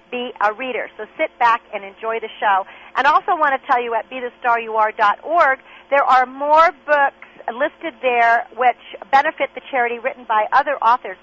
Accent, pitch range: American, 220-285 Hz